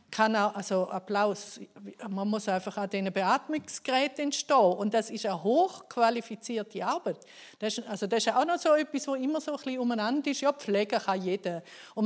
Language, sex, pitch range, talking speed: German, female, 210-260 Hz, 180 wpm